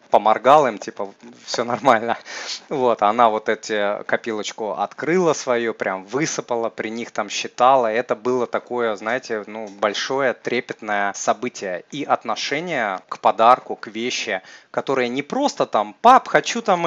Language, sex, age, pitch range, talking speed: Russian, male, 30-49, 110-140 Hz, 140 wpm